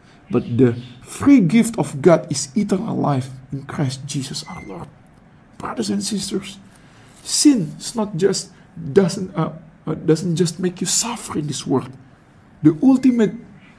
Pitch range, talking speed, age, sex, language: 180-245 Hz, 145 wpm, 50-69, male, English